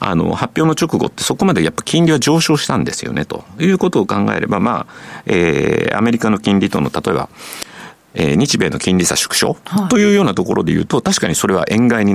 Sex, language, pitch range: male, Japanese, 140-220 Hz